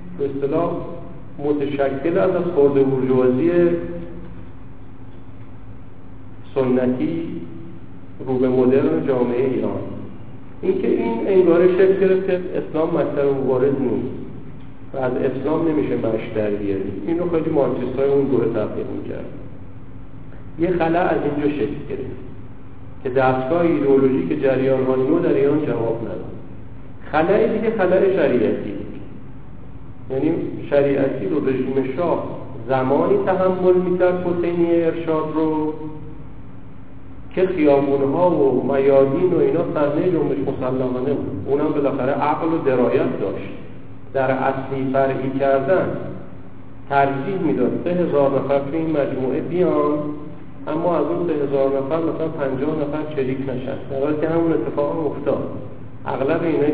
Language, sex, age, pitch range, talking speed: Persian, male, 50-69, 130-155 Hz, 125 wpm